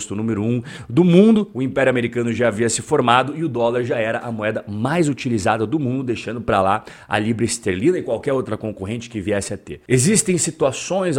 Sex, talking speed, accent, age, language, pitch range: male, 210 wpm, Brazilian, 30-49, Portuguese, 115-155 Hz